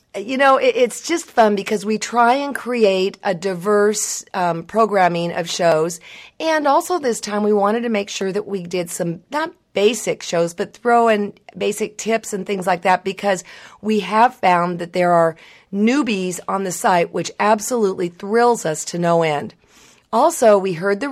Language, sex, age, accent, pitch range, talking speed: English, female, 40-59, American, 175-225 Hz, 180 wpm